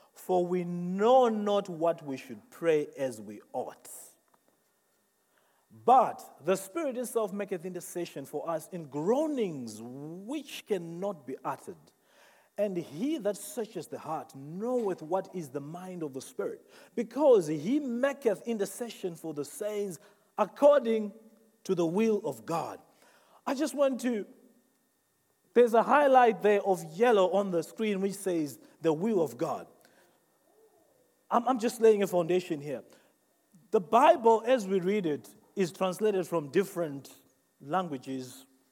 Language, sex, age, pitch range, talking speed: English, male, 40-59, 165-245 Hz, 135 wpm